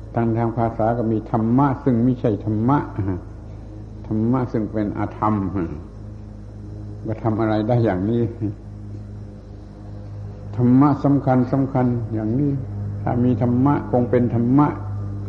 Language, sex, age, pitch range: Thai, male, 60-79, 100-120 Hz